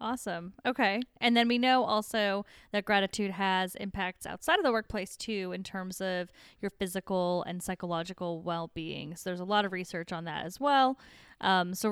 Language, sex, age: English, female, 10-29